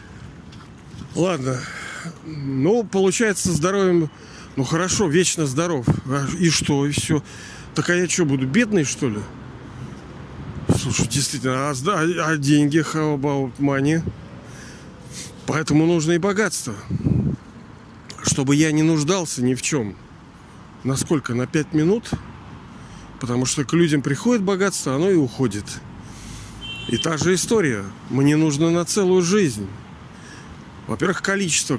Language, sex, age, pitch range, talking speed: Russian, male, 40-59, 135-170 Hz, 115 wpm